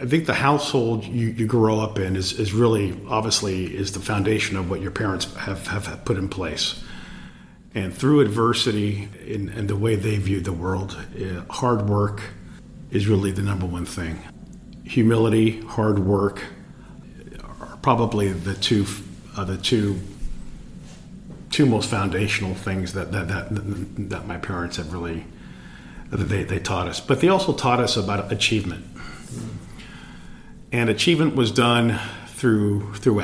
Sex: male